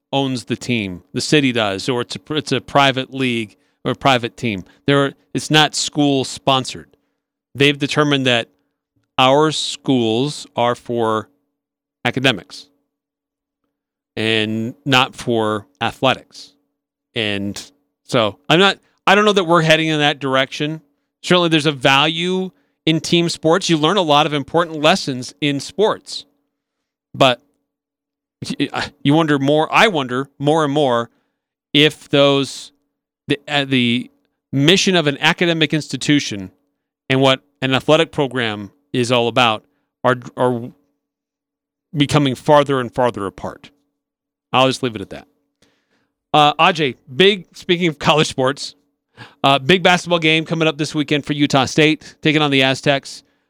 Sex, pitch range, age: male, 125-155 Hz, 40-59